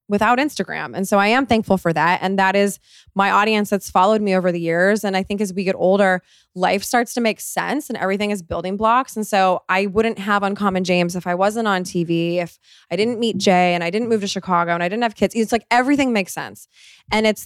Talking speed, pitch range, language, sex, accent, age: 245 wpm, 175-220 Hz, English, female, American, 20-39